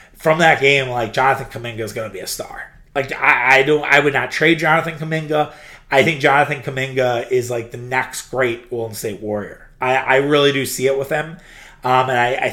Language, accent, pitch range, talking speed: English, American, 120-150 Hz, 215 wpm